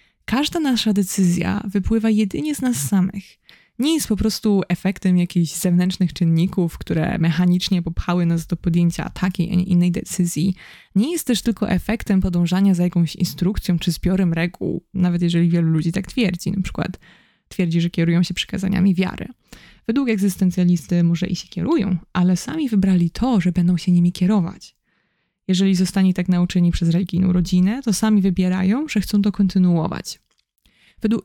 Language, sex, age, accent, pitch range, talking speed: Polish, female, 20-39, native, 175-205 Hz, 160 wpm